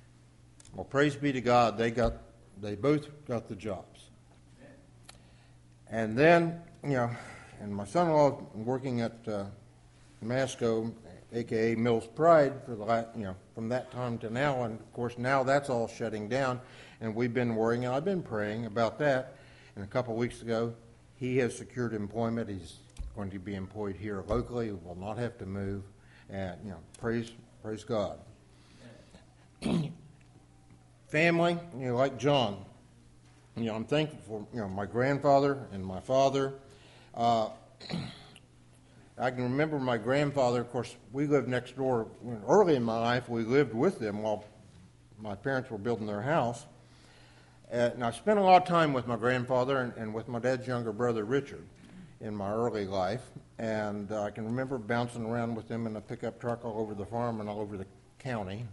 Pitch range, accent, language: 105-125 Hz, American, English